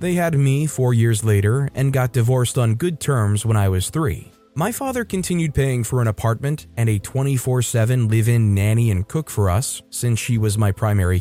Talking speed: 200 wpm